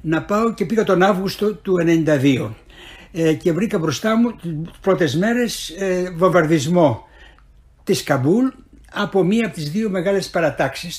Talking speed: 145 wpm